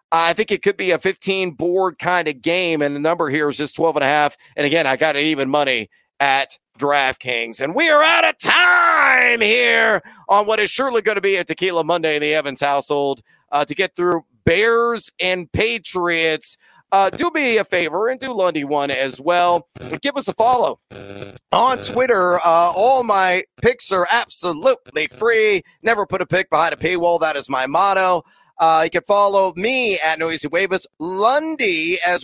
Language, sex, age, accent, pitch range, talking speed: English, male, 40-59, American, 155-205 Hz, 195 wpm